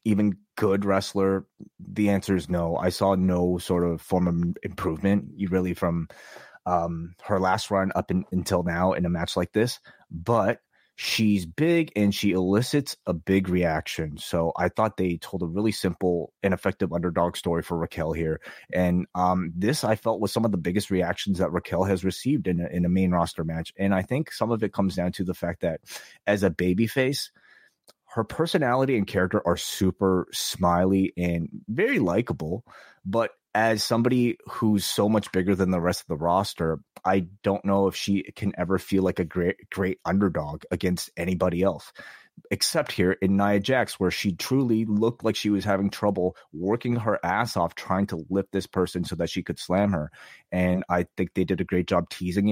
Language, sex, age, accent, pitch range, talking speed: English, male, 30-49, American, 90-100 Hz, 190 wpm